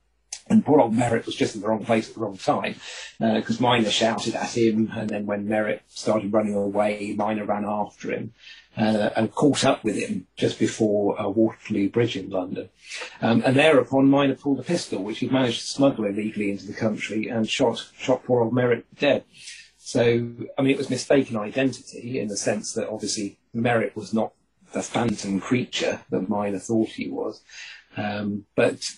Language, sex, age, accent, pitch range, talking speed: English, male, 40-59, British, 105-120 Hz, 190 wpm